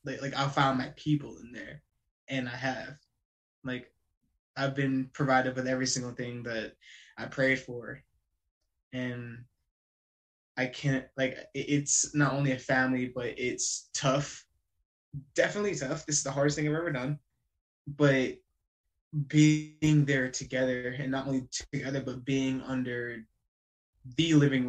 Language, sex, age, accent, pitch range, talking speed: English, male, 20-39, American, 120-140 Hz, 140 wpm